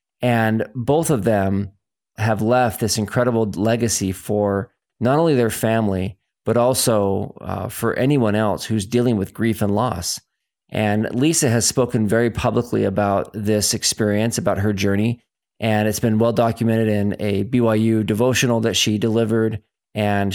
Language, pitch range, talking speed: English, 105-120 Hz, 145 wpm